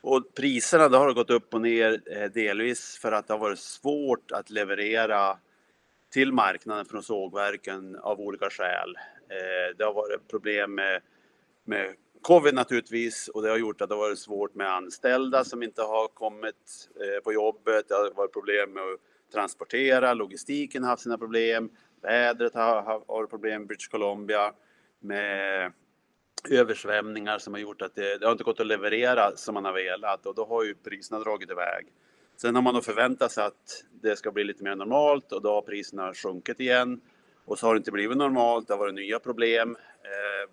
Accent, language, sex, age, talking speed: Norwegian, Swedish, male, 30-49, 180 wpm